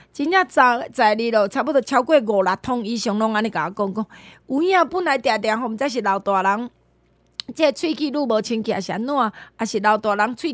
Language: Chinese